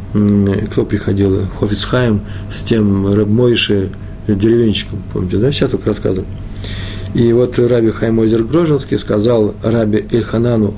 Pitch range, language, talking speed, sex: 100-125 Hz, Russian, 115 wpm, male